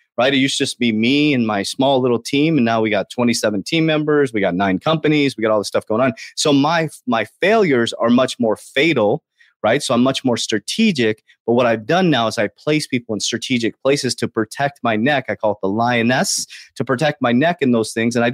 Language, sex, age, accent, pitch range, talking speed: English, male, 30-49, American, 130-190 Hz, 240 wpm